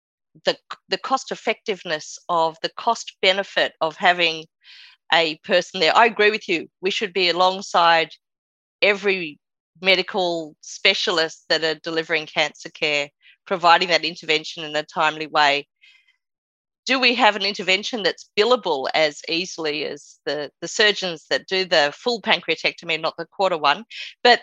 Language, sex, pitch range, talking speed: English, female, 165-235 Hz, 145 wpm